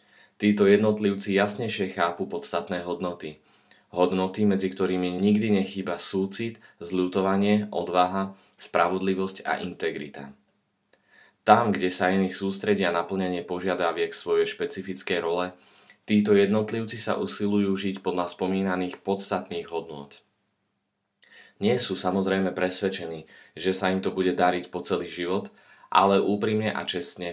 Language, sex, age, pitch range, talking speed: Slovak, male, 20-39, 90-100 Hz, 120 wpm